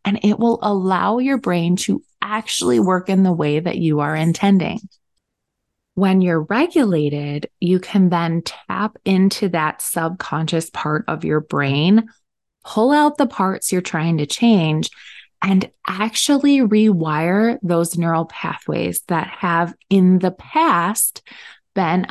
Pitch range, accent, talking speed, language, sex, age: 165-210 Hz, American, 135 wpm, English, female, 20-39